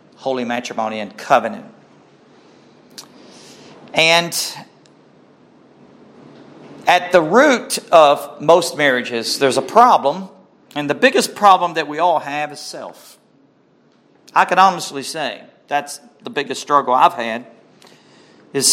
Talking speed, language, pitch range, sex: 110 wpm, English, 135-185 Hz, male